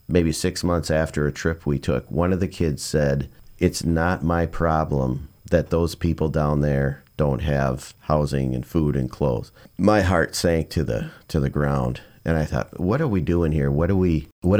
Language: English